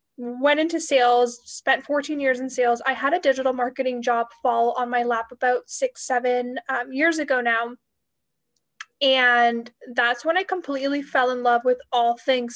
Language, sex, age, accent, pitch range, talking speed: English, female, 10-29, American, 250-290 Hz, 170 wpm